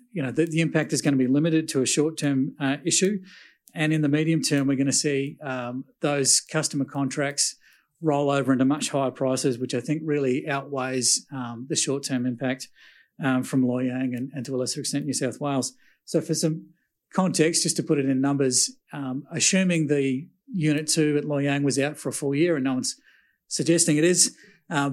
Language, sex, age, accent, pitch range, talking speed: English, male, 40-59, Australian, 135-155 Hz, 205 wpm